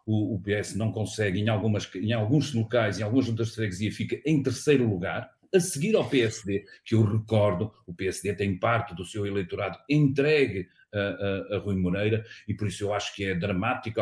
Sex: male